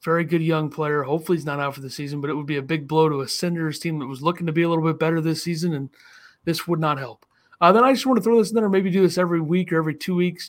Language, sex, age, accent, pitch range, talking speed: English, male, 30-49, American, 155-180 Hz, 325 wpm